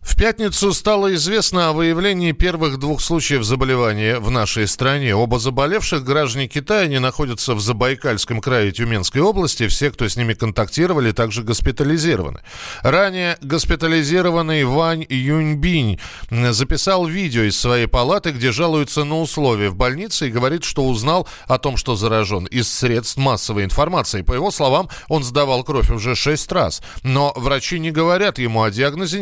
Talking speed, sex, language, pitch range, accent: 150 wpm, male, Russian, 120-165 Hz, native